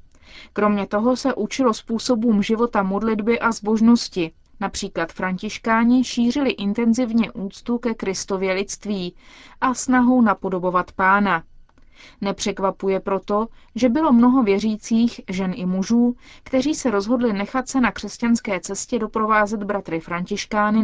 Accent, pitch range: native, 195-240 Hz